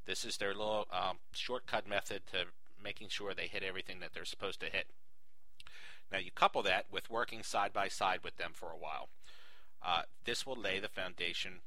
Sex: male